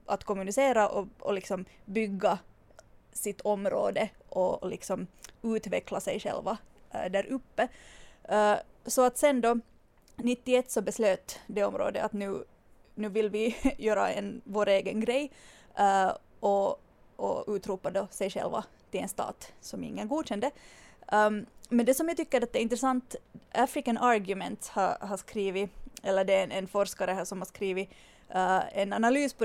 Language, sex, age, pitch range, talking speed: English, female, 20-39, 200-240 Hz, 160 wpm